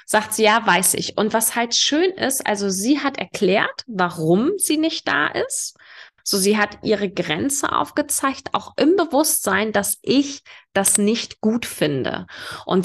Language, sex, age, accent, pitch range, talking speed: German, female, 20-39, German, 185-260 Hz, 165 wpm